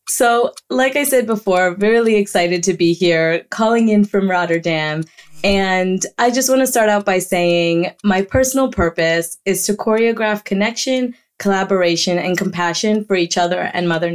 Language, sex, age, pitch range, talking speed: English, female, 20-39, 170-215 Hz, 160 wpm